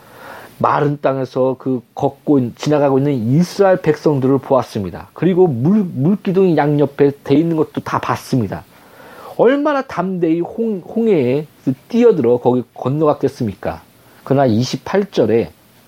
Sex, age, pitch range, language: male, 40-59, 120-170 Hz, Korean